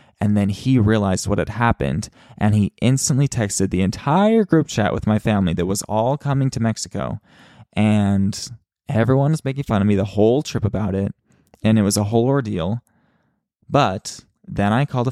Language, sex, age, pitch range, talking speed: English, male, 20-39, 100-120 Hz, 185 wpm